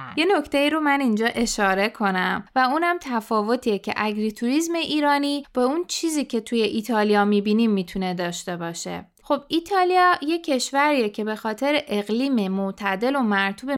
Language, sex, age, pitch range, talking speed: Persian, female, 20-39, 215-285 Hz, 150 wpm